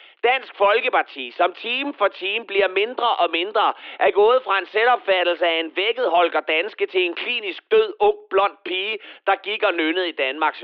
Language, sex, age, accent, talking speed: Danish, male, 30-49, native, 180 wpm